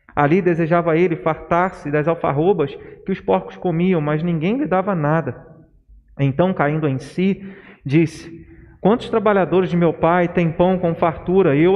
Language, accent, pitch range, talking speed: Portuguese, Brazilian, 155-195 Hz, 155 wpm